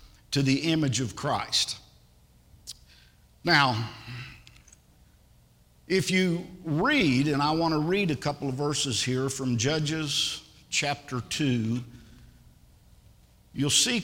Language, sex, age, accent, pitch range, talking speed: English, male, 50-69, American, 120-160 Hz, 105 wpm